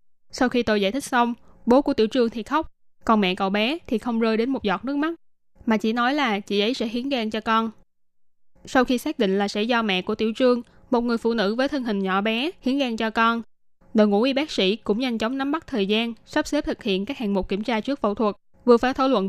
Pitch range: 205-255 Hz